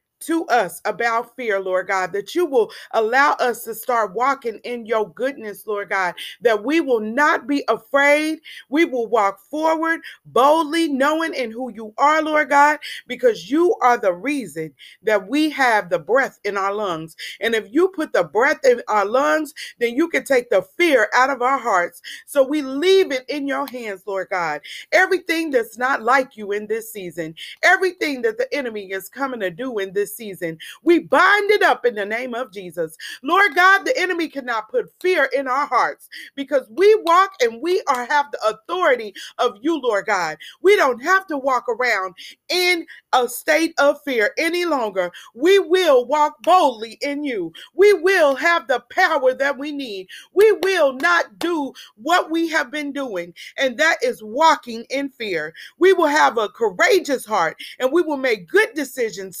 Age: 40-59